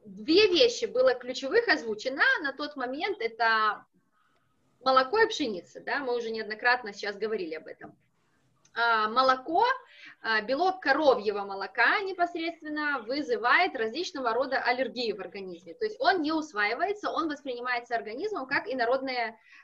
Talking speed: 125 wpm